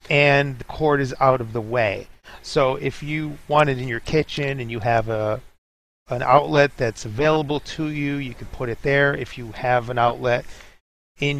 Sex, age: male, 40-59